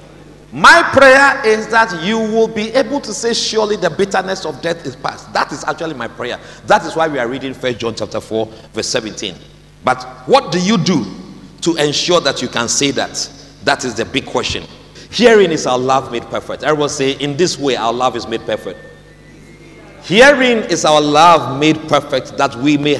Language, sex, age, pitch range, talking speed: English, male, 40-59, 145-195 Hz, 200 wpm